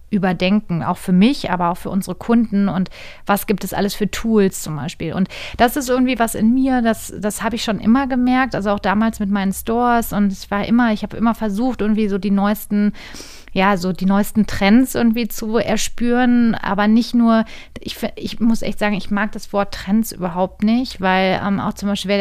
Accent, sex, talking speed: German, female, 210 wpm